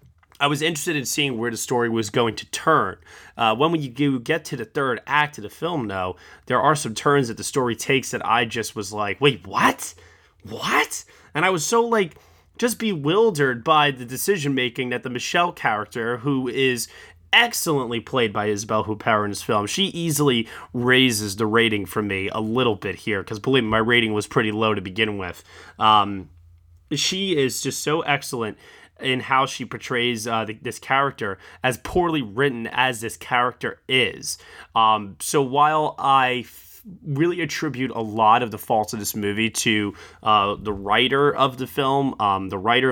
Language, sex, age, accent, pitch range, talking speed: English, male, 30-49, American, 110-140 Hz, 185 wpm